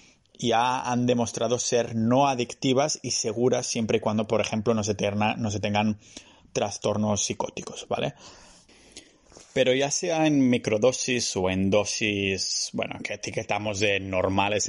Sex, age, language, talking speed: male, 20-39, Spanish, 135 wpm